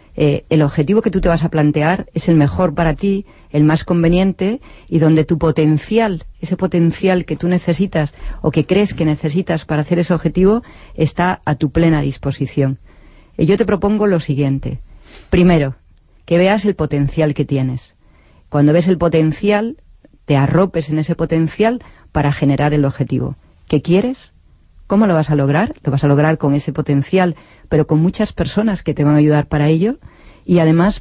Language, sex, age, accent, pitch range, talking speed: Spanish, female, 40-59, Spanish, 140-175 Hz, 180 wpm